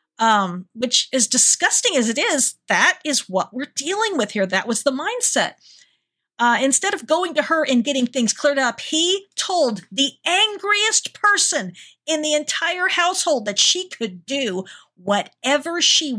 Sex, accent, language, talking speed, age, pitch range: female, American, English, 165 wpm, 50-69, 225-305 Hz